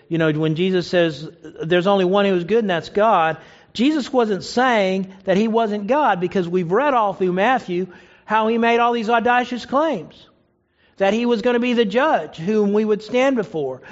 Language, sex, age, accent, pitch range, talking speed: English, male, 50-69, American, 185-250 Hz, 205 wpm